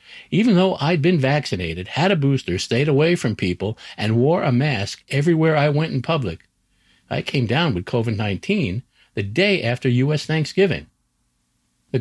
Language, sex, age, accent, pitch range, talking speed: English, male, 50-69, American, 95-145 Hz, 160 wpm